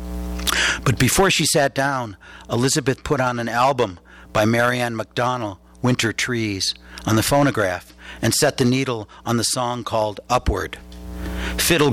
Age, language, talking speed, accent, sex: 60-79, English, 140 wpm, American, male